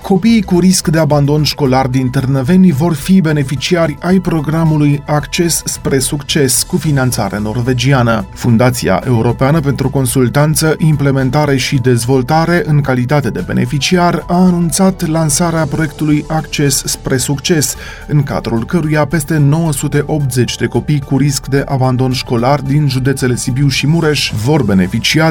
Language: Romanian